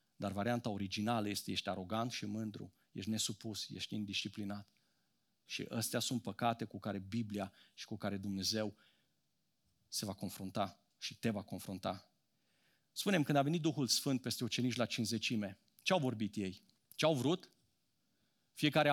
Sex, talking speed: male, 145 wpm